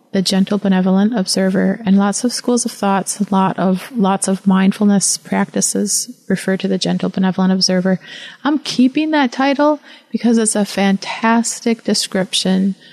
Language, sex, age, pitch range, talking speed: English, female, 30-49, 190-220 Hz, 150 wpm